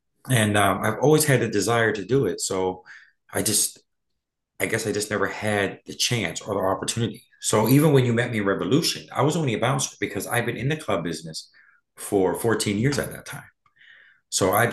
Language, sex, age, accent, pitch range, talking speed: English, male, 30-49, American, 90-110 Hz, 210 wpm